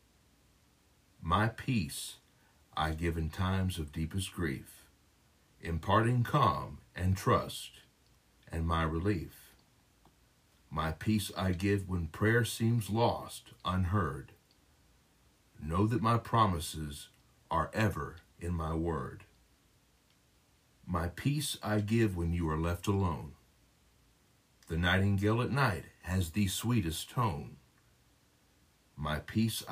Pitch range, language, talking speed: 85-110 Hz, English, 105 wpm